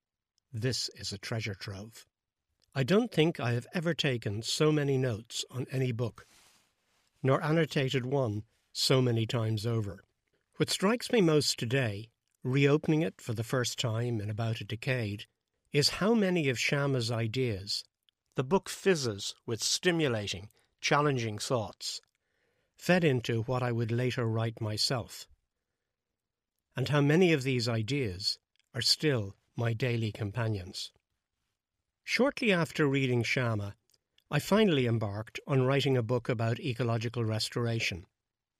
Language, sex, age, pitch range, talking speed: English, male, 60-79, 115-145 Hz, 135 wpm